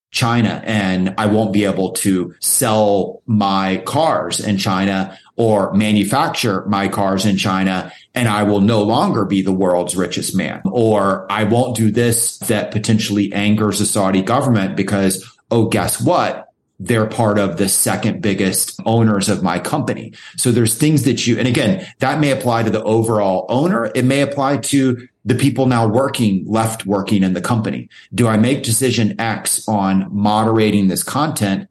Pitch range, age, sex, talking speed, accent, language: 95-115 Hz, 30-49, male, 170 wpm, American, English